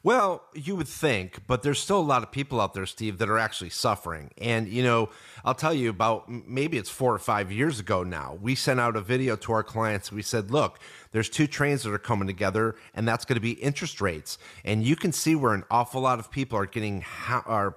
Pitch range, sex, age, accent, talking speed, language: 105-135 Hz, male, 30-49, American, 240 wpm, English